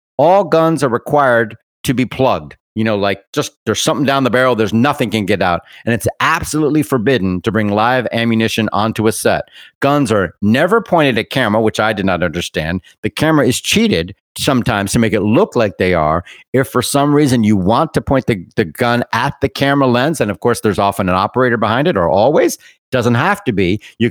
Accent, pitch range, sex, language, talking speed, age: American, 105-130 Hz, male, English, 215 wpm, 50-69